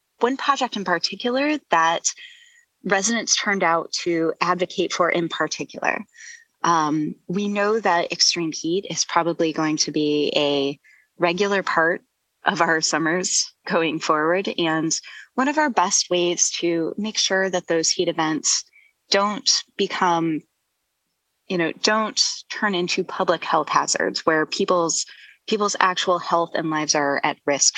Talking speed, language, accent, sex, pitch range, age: 140 wpm, English, American, female, 160-205 Hz, 20-39